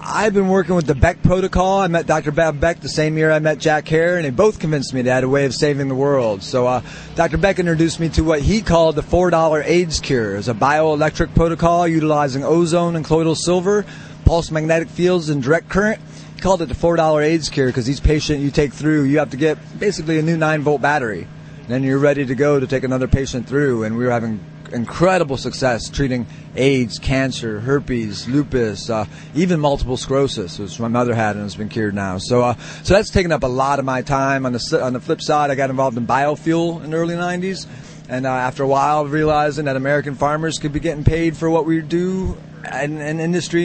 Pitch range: 130-165 Hz